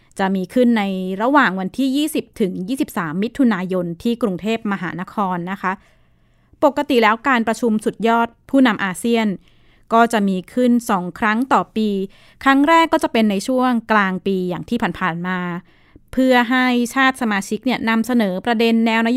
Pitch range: 185-240 Hz